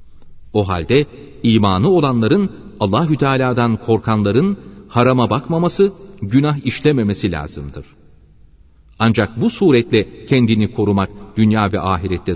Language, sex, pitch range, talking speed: Turkish, male, 85-140 Hz, 90 wpm